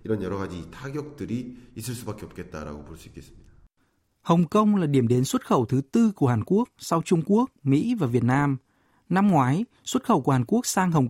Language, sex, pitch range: Vietnamese, male, 135-200 Hz